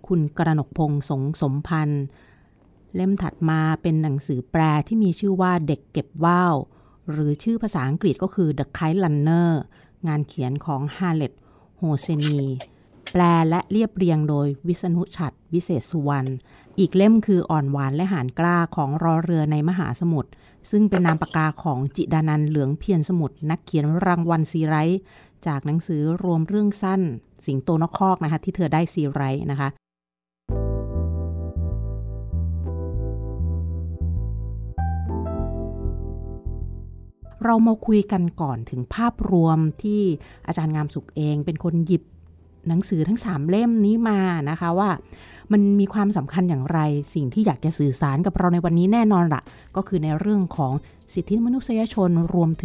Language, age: Thai, 30-49